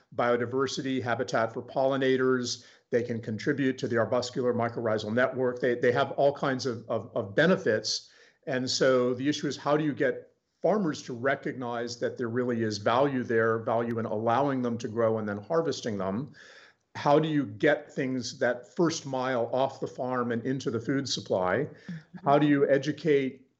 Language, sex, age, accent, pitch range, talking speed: English, male, 50-69, American, 115-135 Hz, 175 wpm